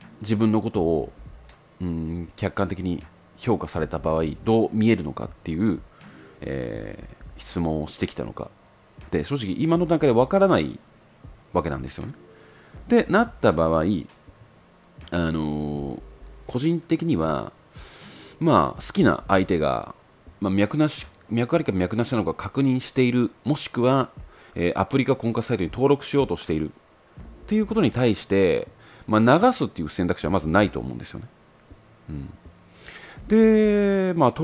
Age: 30-49